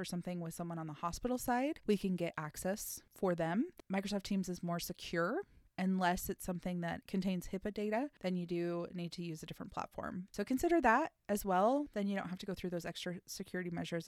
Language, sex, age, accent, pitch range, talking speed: English, female, 20-39, American, 175-210 Hz, 215 wpm